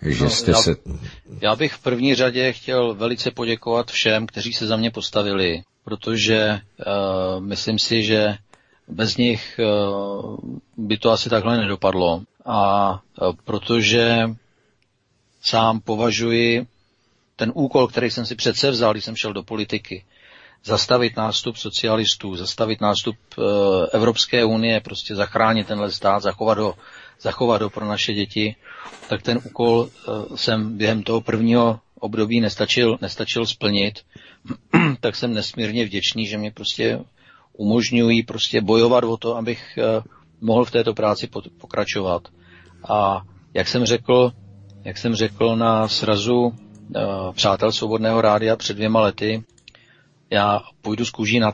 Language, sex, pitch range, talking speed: Czech, male, 105-115 Hz, 125 wpm